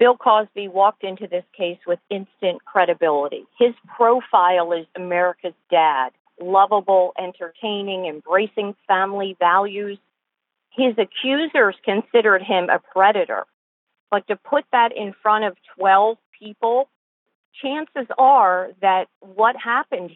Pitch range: 190-250 Hz